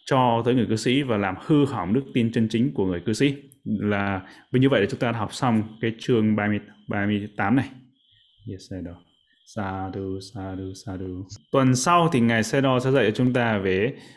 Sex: male